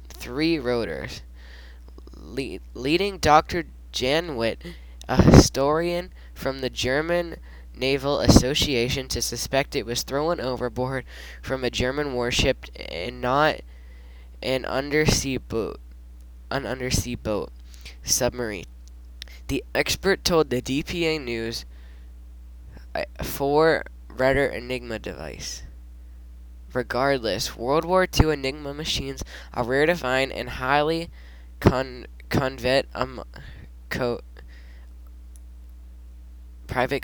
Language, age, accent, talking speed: English, 10-29, American, 95 wpm